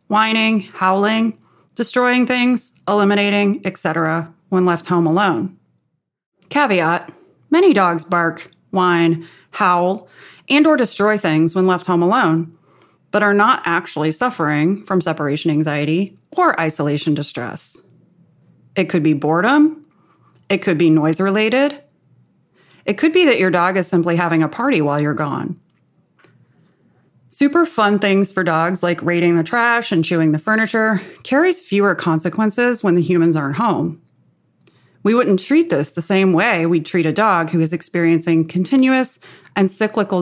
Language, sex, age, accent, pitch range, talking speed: English, female, 30-49, American, 165-220 Hz, 145 wpm